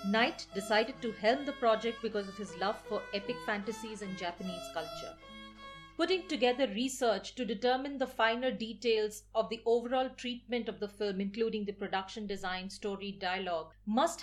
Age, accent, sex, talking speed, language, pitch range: 40-59, Indian, female, 160 wpm, English, 195-255 Hz